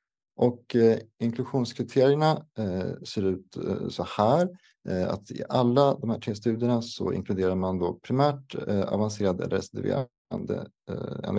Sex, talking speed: male, 135 wpm